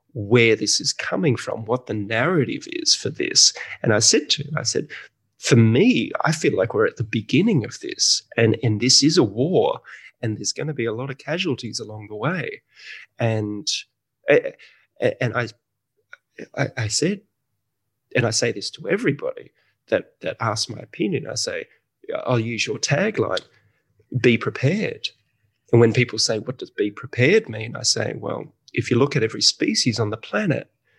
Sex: male